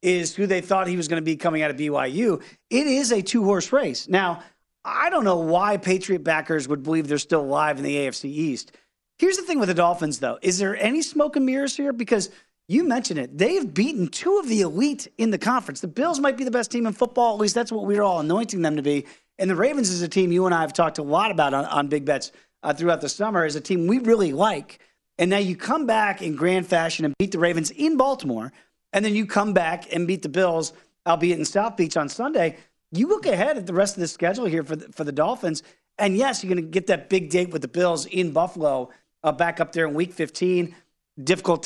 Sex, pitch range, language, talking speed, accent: male, 165-240 Hz, English, 250 wpm, American